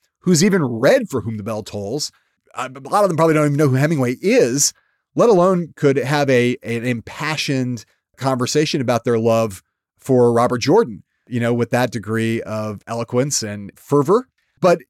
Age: 30-49